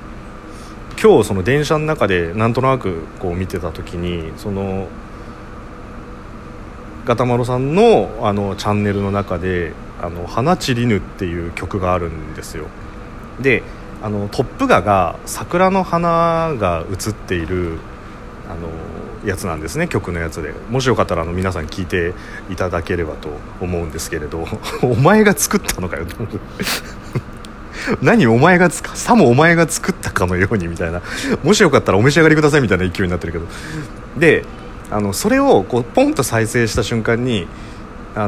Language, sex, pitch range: Japanese, male, 90-125 Hz